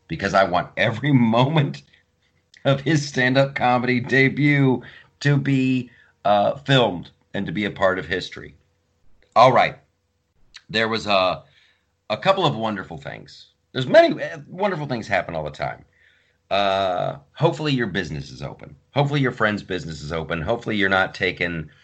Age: 40-59